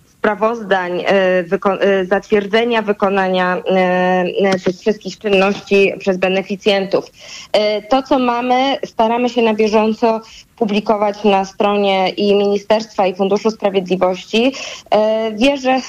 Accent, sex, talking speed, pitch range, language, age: native, female, 90 wpm, 195-225 Hz, Polish, 20-39